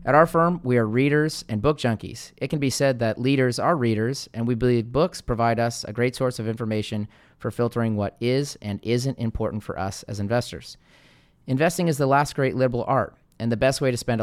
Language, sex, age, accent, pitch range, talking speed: English, male, 30-49, American, 115-145 Hz, 220 wpm